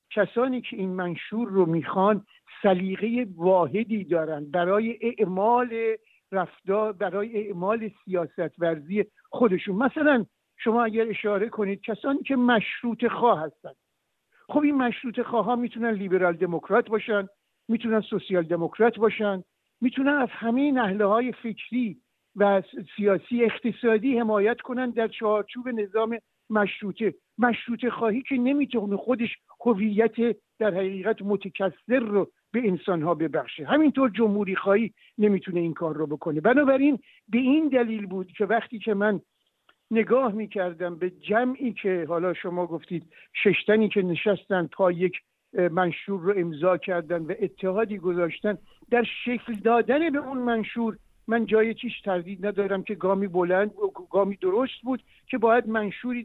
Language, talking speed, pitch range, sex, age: Persian, 135 wpm, 190-235 Hz, male, 60-79